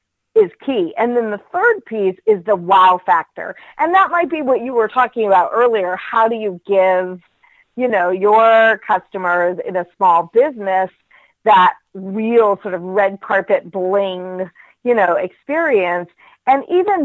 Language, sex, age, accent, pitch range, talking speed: English, female, 40-59, American, 195-250 Hz, 160 wpm